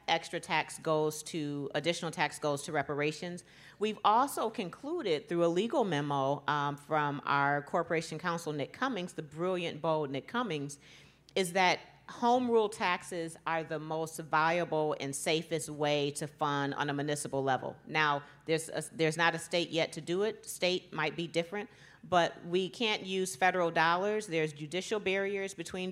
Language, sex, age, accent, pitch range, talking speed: English, female, 40-59, American, 150-175 Hz, 160 wpm